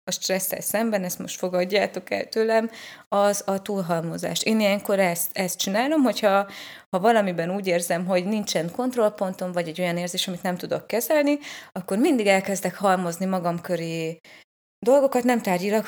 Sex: female